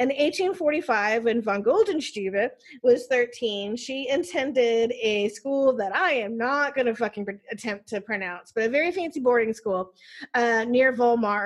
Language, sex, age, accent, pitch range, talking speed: English, female, 30-49, American, 225-320 Hz, 155 wpm